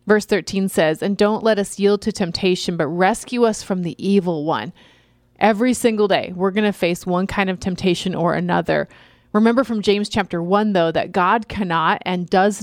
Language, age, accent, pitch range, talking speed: English, 30-49, American, 180-215 Hz, 195 wpm